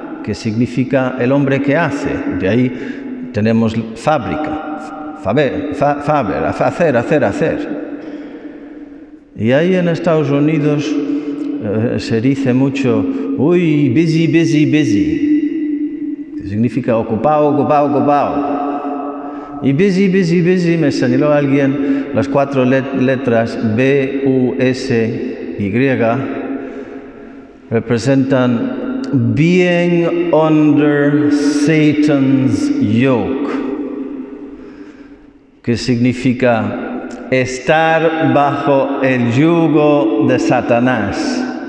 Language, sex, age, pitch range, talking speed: Spanish, male, 50-69, 130-190 Hz, 90 wpm